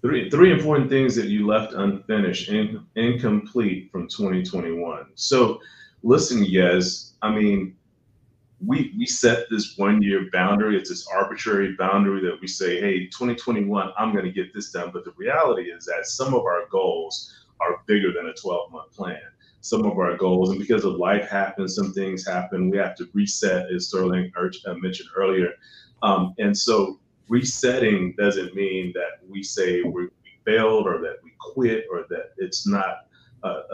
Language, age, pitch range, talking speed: English, 30-49, 95-155 Hz, 170 wpm